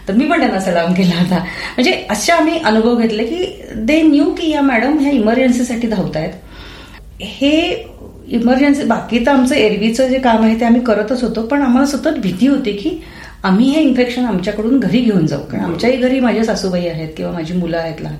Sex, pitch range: female, 170-245 Hz